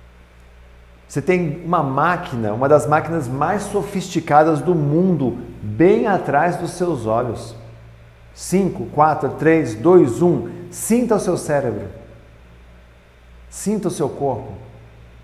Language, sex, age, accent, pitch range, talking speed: Portuguese, male, 50-69, Brazilian, 130-185 Hz, 115 wpm